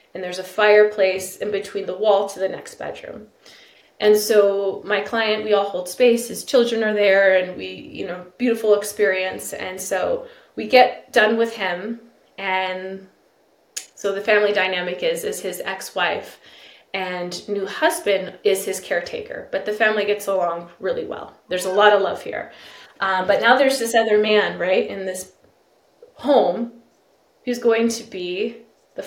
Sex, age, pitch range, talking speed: female, 20-39, 190-230 Hz, 165 wpm